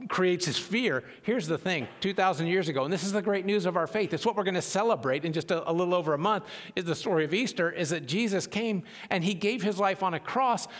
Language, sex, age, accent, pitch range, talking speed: English, male, 50-69, American, 170-220 Hz, 270 wpm